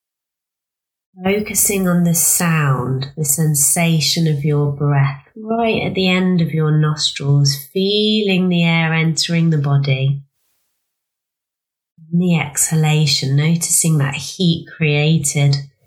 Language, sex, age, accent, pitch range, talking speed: English, female, 30-49, British, 140-170 Hz, 105 wpm